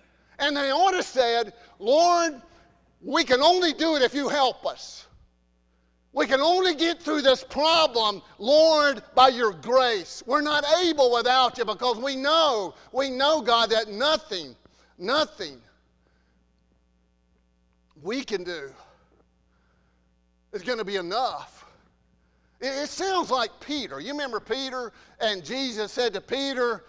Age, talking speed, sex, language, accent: 50-69, 135 wpm, male, English, American